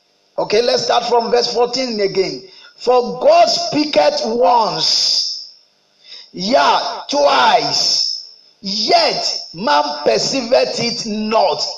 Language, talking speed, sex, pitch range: English, 90 wpm, male, 220-300 Hz